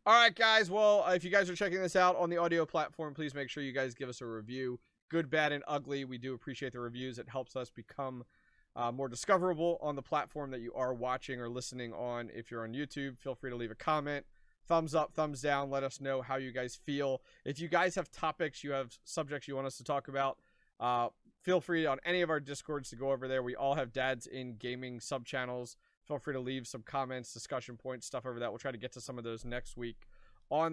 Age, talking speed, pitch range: 20-39, 245 wpm, 125-150 Hz